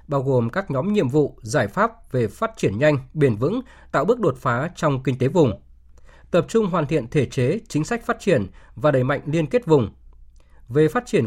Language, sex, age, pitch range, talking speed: Vietnamese, male, 20-39, 125-170 Hz, 220 wpm